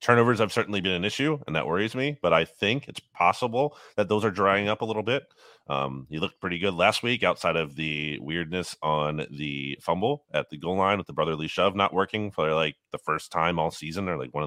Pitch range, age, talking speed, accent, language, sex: 80-105 Hz, 30-49, 235 wpm, American, English, male